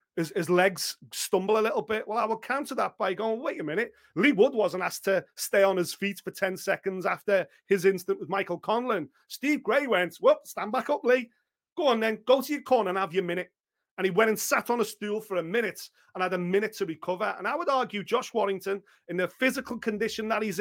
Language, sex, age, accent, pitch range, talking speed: English, male, 40-59, British, 205-265 Hz, 240 wpm